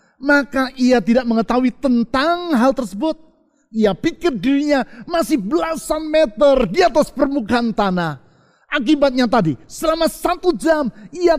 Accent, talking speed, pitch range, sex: native, 120 wpm, 230-295 Hz, male